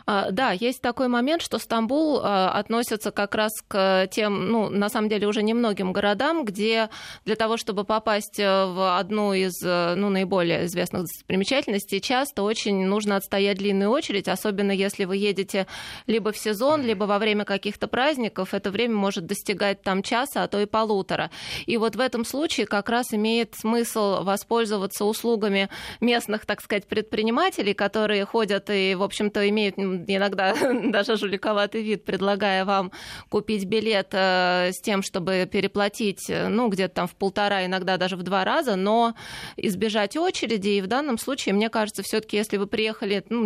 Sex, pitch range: female, 195-225 Hz